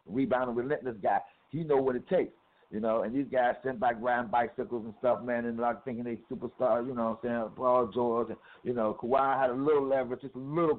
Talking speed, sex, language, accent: 250 wpm, male, English, American